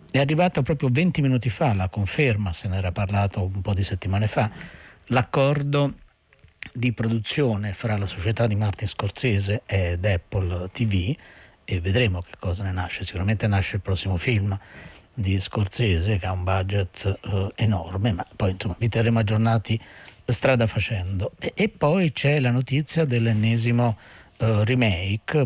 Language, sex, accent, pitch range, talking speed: Italian, male, native, 95-120 Hz, 155 wpm